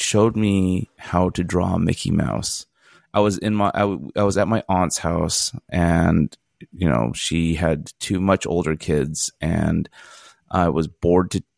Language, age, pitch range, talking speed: English, 30-49, 85-100 Hz, 165 wpm